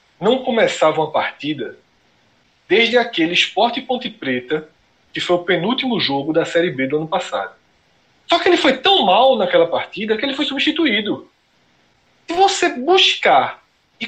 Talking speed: 155 wpm